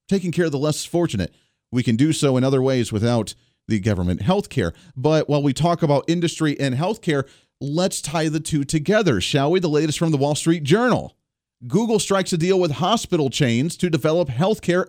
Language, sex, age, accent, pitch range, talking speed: English, male, 40-59, American, 135-185 Hz, 205 wpm